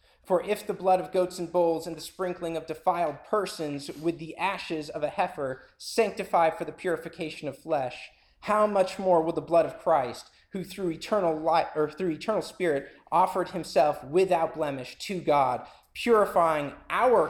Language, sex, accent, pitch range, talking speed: English, male, American, 145-180 Hz, 175 wpm